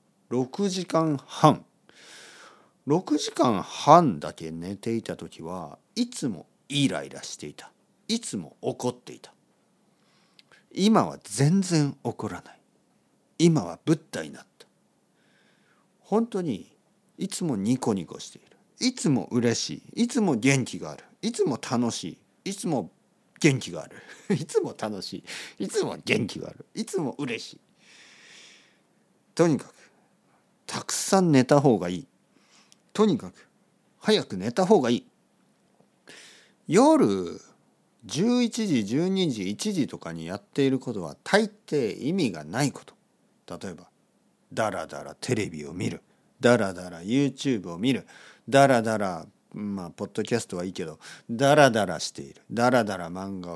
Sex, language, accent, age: male, Japanese, native, 50-69